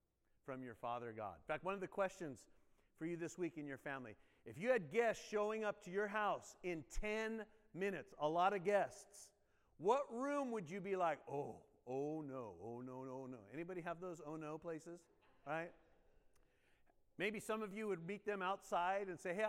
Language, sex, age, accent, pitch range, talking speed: English, male, 50-69, American, 165-210 Hz, 200 wpm